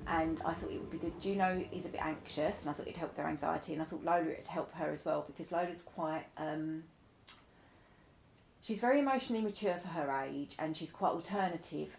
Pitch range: 150-190 Hz